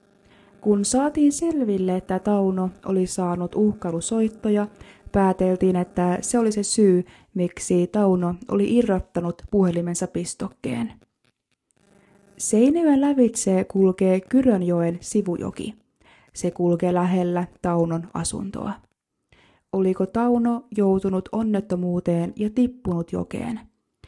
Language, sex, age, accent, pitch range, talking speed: Finnish, female, 20-39, native, 180-215 Hz, 90 wpm